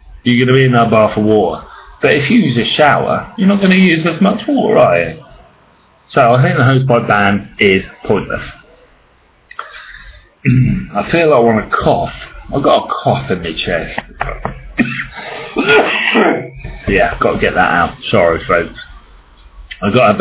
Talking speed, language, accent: 165 wpm, English, British